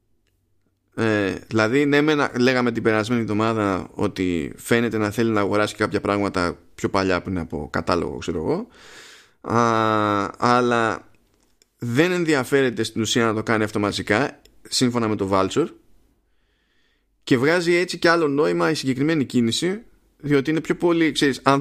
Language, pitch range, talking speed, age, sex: Greek, 100-135 Hz, 140 wpm, 20-39, male